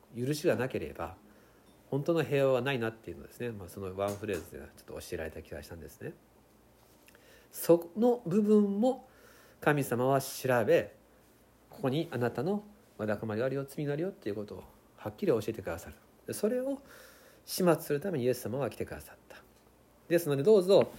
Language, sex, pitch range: Japanese, male, 110-165 Hz